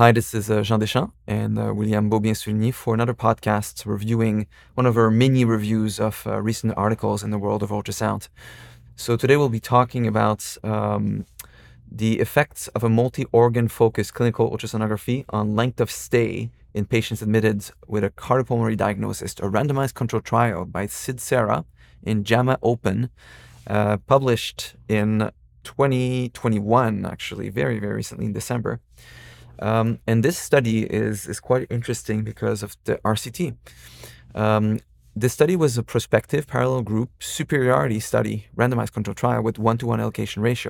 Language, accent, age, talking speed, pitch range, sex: English, Canadian, 30-49, 150 wpm, 105-120 Hz, male